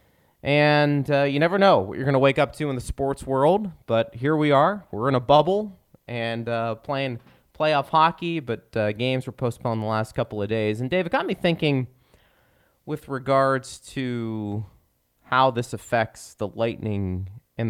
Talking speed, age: 185 wpm, 30-49